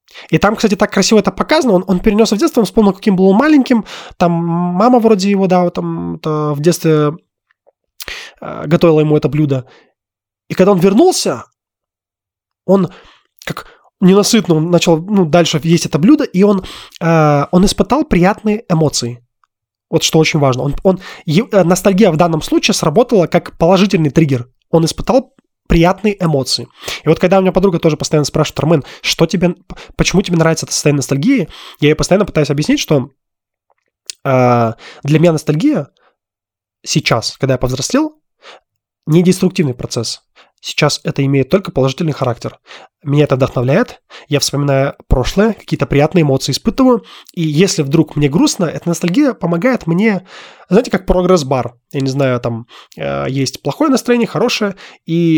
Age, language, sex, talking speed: 20-39, Russian, male, 150 wpm